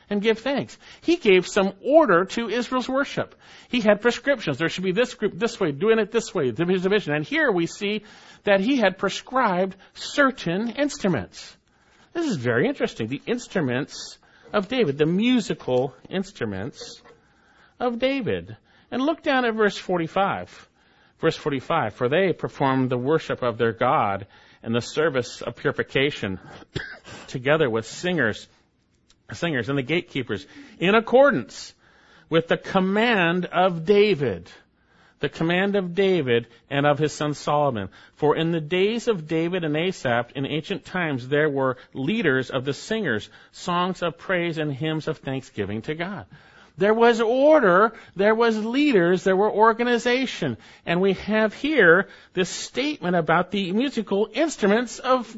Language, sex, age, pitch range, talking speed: English, male, 50-69, 150-225 Hz, 150 wpm